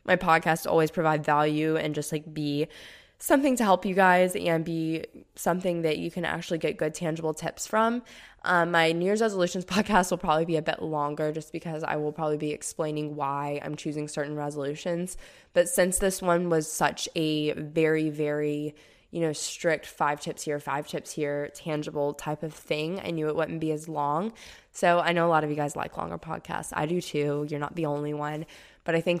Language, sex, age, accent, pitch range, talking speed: English, female, 20-39, American, 150-175 Hz, 210 wpm